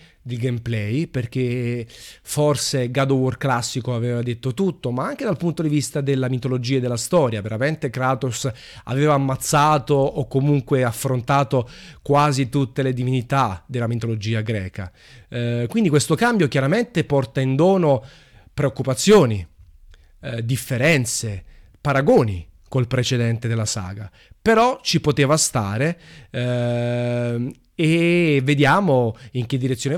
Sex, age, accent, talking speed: male, 30-49, native, 125 wpm